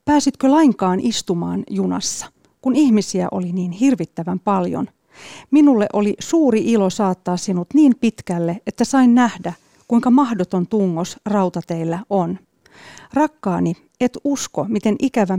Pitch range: 180-235 Hz